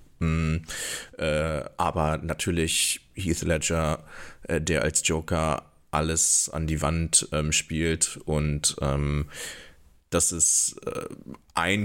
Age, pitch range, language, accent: 30-49, 80-90 Hz, English, German